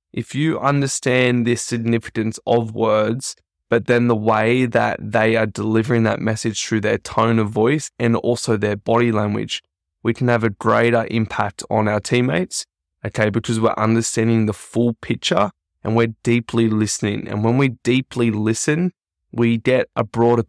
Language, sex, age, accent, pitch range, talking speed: English, male, 20-39, Australian, 105-120 Hz, 165 wpm